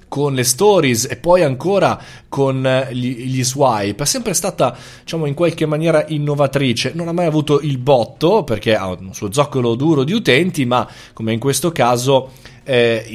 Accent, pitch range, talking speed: native, 110-145 Hz, 170 wpm